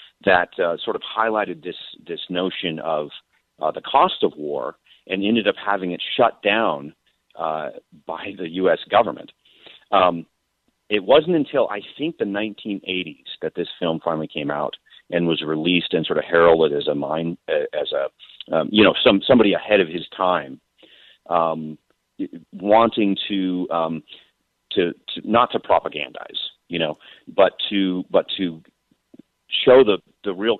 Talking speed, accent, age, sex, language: 155 wpm, American, 40-59, male, English